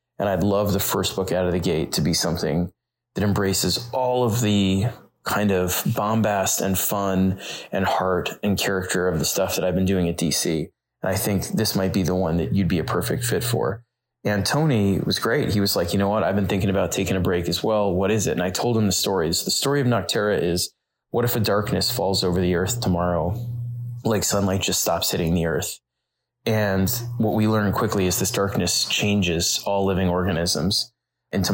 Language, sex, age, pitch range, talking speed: English, male, 20-39, 90-110 Hz, 215 wpm